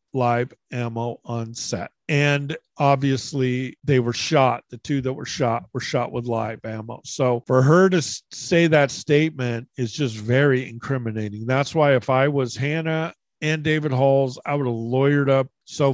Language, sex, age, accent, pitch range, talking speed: English, male, 50-69, American, 125-145 Hz, 170 wpm